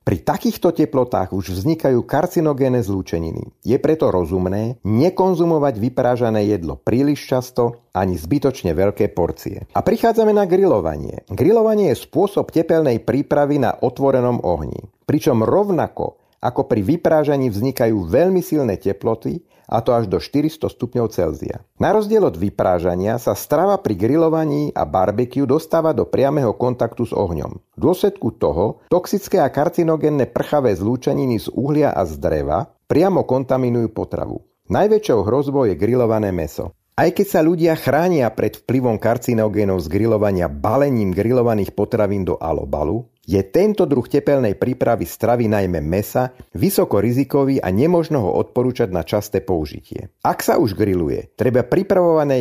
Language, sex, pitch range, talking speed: Slovak, male, 105-150 Hz, 140 wpm